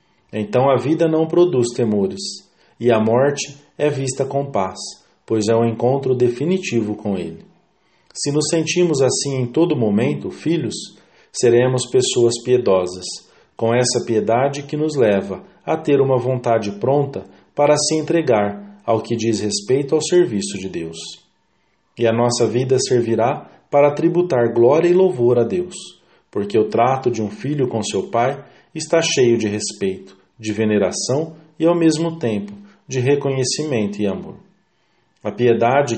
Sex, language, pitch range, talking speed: male, English, 110-155 Hz, 150 wpm